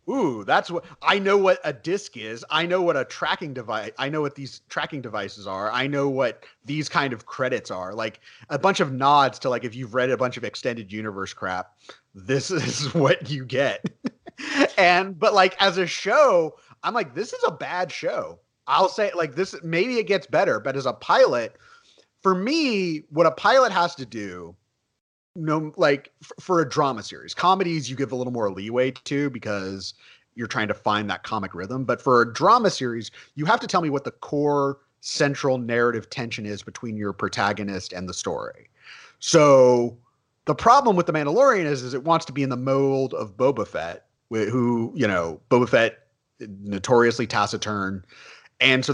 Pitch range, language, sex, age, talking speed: 115-170 Hz, English, male, 30-49, 190 wpm